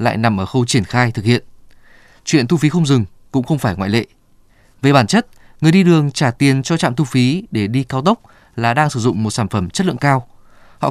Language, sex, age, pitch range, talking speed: Vietnamese, male, 20-39, 120-165 Hz, 250 wpm